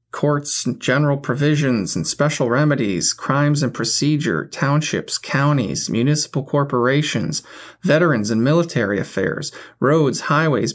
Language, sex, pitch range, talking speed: English, male, 135-180 Hz, 105 wpm